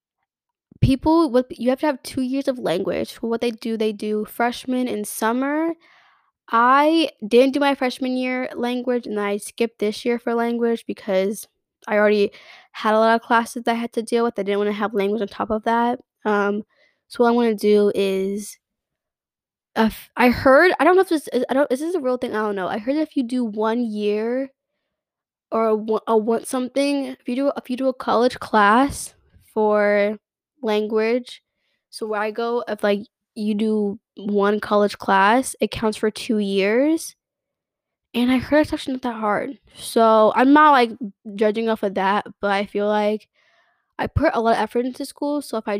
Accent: American